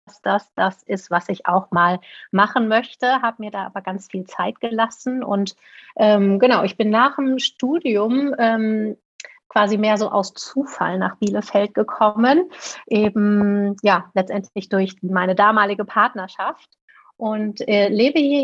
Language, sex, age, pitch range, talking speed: German, female, 30-49, 190-225 Hz, 150 wpm